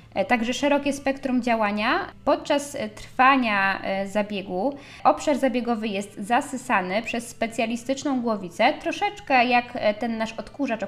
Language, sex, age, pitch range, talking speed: Polish, female, 20-39, 210-260 Hz, 110 wpm